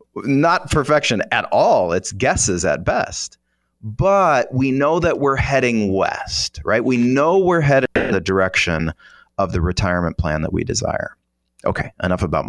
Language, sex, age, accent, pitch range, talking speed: English, male, 30-49, American, 85-115 Hz, 160 wpm